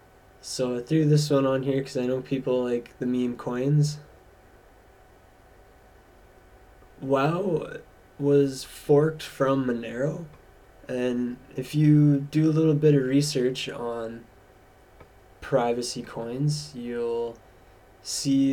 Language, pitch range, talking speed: English, 95-135 Hz, 110 wpm